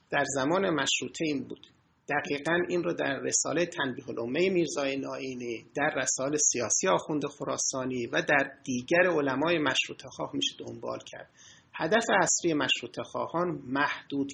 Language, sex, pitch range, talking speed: Persian, male, 135-185 Hz, 130 wpm